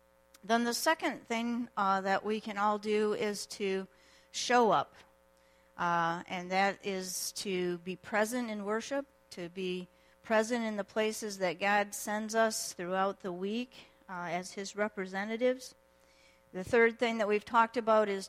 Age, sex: 40-59, female